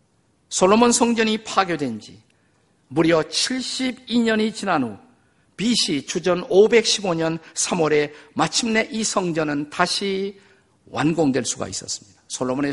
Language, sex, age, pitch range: Korean, male, 50-69, 130-190 Hz